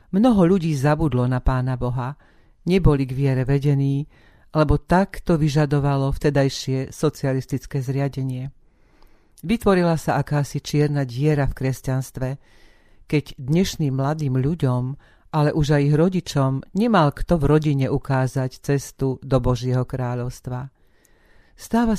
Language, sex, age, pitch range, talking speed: Slovak, female, 40-59, 130-155 Hz, 115 wpm